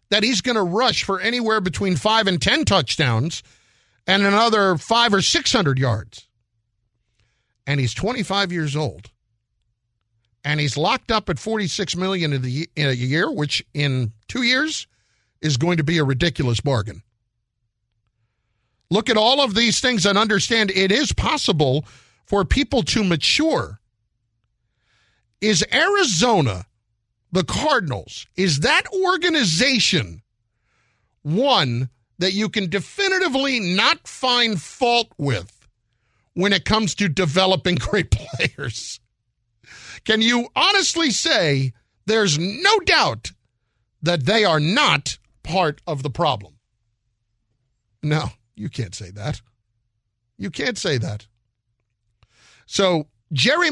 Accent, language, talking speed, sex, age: American, English, 120 wpm, male, 50-69